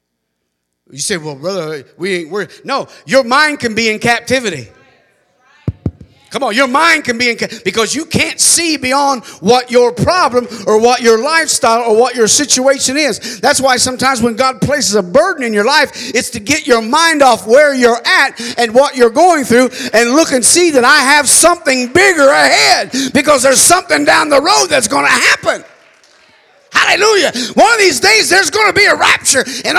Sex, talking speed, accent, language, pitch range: male, 195 wpm, American, English, 205-295 Hz